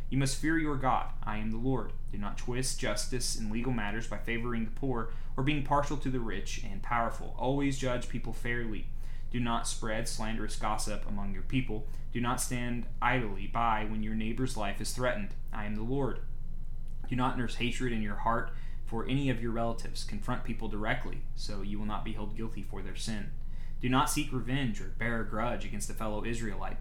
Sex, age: male, 20-39